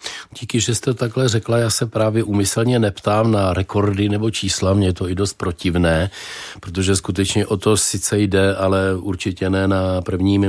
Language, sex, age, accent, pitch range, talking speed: Czech, male, 40-59, native, 90-100 Hz, 175 wpm